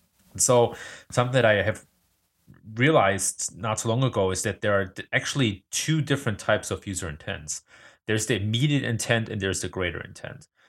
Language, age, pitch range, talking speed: English, 30-49, 95-125 Hz, 175 wpm